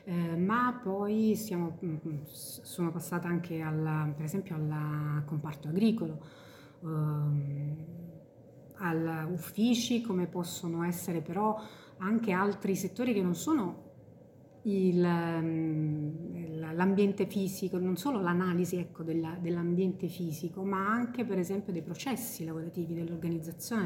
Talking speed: 110 wpm